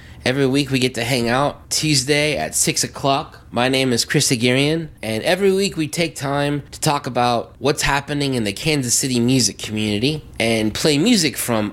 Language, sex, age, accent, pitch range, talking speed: English, male, 20-39, American, 110-140 Hz, 190 wpm